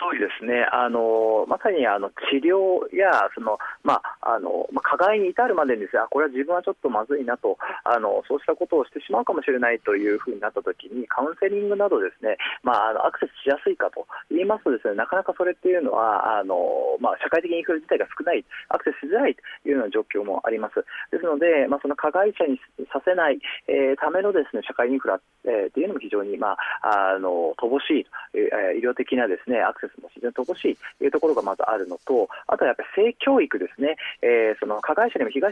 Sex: male